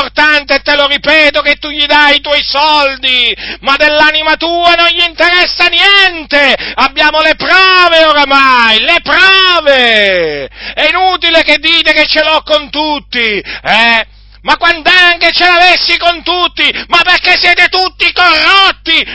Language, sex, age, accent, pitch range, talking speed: Italian, male, 40-59, native, 280-345 Hz, 140 wpm